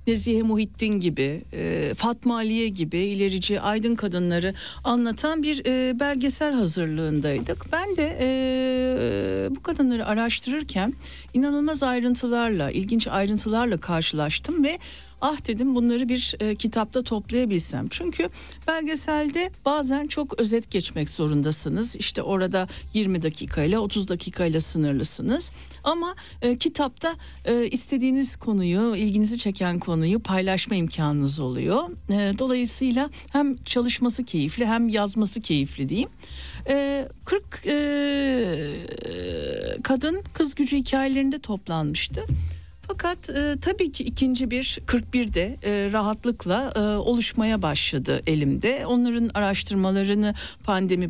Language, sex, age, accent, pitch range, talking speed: Turkish, female, 60-79, native, 185-265 Hz, 100 wpm